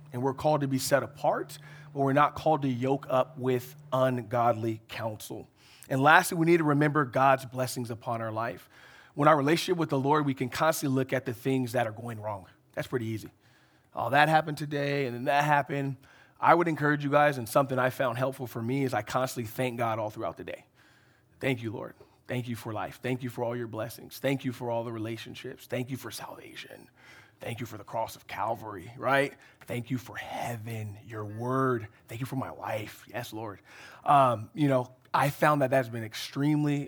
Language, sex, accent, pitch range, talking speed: English, male, American, 120-145 Hz, 215 wpm